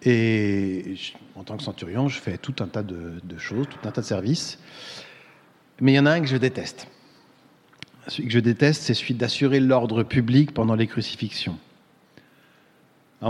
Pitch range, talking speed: 110-140 Hz, 175 wpm